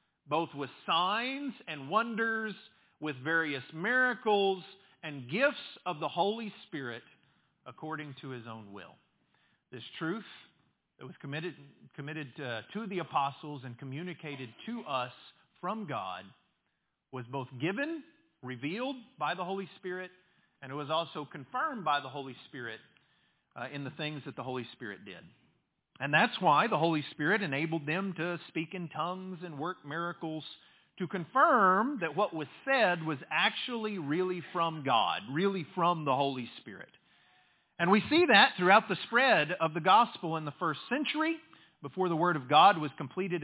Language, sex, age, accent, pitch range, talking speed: English, male, 40-59, American, 150-210 Hz, 155 wpm